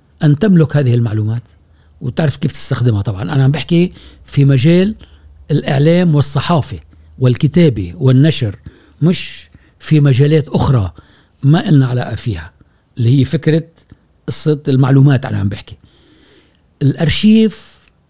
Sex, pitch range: male, 115-160 Hz